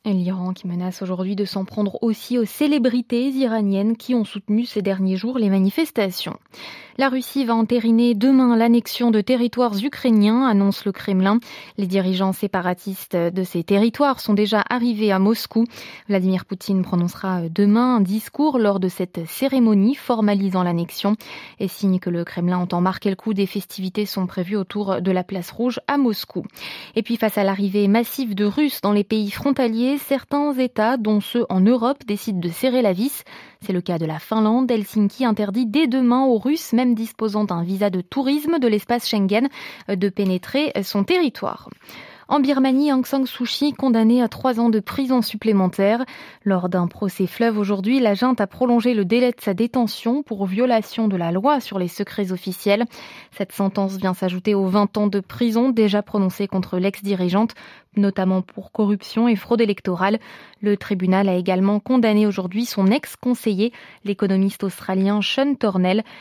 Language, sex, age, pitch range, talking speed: French, female, 20-39, 195-240 Hz, 170 wpm